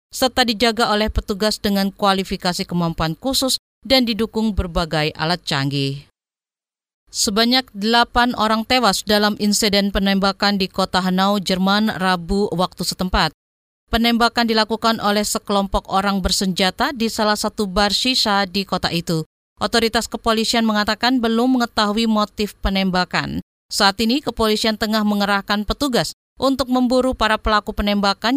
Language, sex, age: Indonesian, female, 40-59